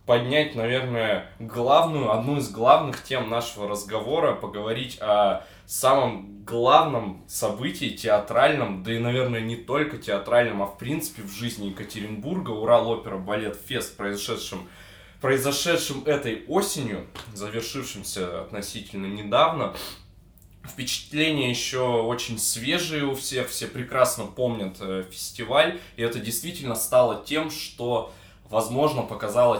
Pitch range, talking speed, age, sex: 105-135 Hz, 105 wpm, 20-39, male